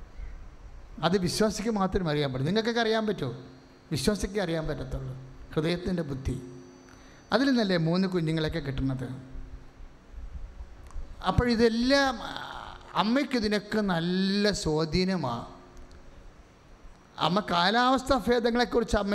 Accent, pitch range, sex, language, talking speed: Indian, 150-220 Hz, male, English, 55 wpm